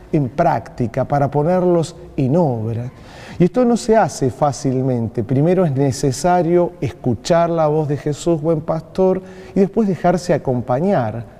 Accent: Argentinian